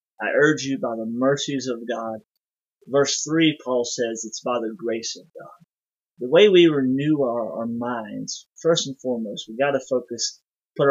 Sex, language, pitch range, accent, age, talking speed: male, English, 120-145 Hz, American, 30-49, 180 wpm